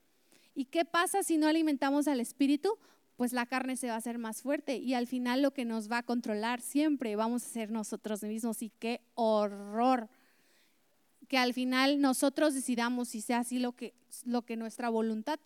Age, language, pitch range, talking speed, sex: 30-49, Spanish, 235-300 Hz, 185 wpm, female